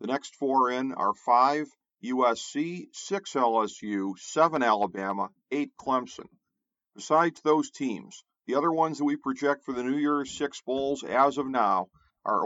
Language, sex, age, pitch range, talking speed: English, male, 50-69, 120-155 Hz, 155 wpm